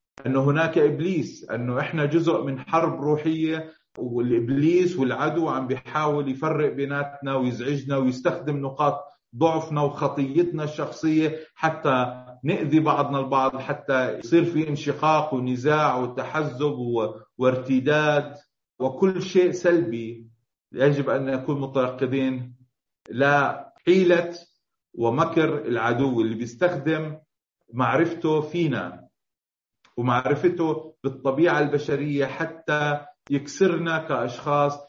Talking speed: 90 wpm